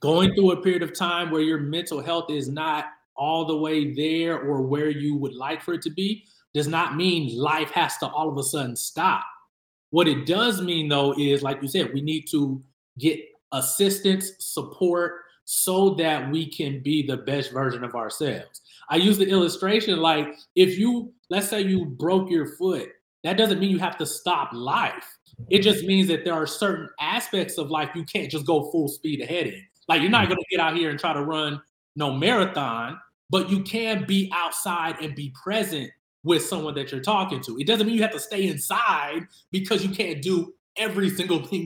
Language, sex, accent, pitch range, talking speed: English, male, American, 150-195 Hz, 205 wpm